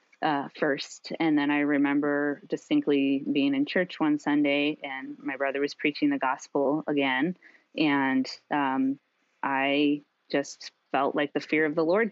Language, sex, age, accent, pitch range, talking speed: English, female, 20-39, American, 145-175 Hz, 155 wpm